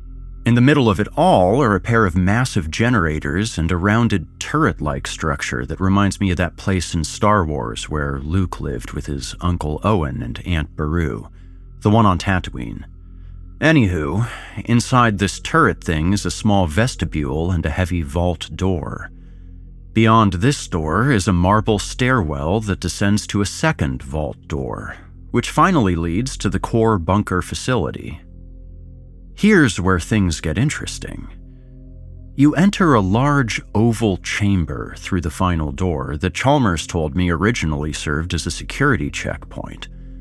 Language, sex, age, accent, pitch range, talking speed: English, male, 40-59, American, 85-110 Hz, 150 wpm